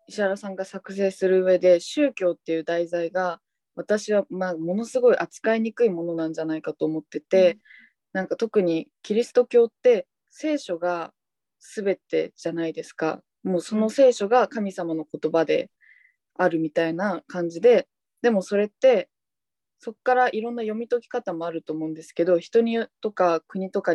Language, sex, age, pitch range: Japanese, female, 20-39, 170-225 Hz